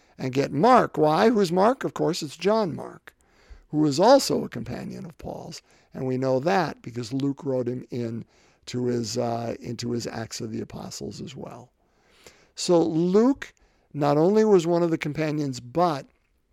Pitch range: 130-170 Hz